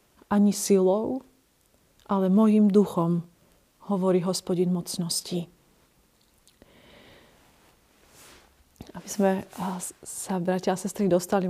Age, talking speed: 30-49, 80 wpm